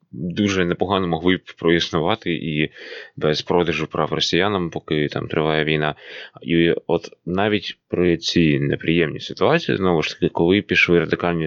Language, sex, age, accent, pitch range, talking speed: Ukrainian, male, 20-39, native, 80-100 Hz, 135 wpm